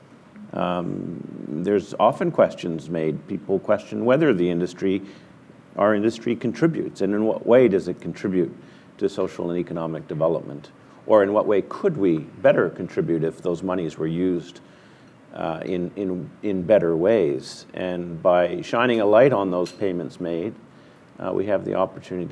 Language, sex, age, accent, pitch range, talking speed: English, male, 50-69, American, 90-105 Hz, 155 wpm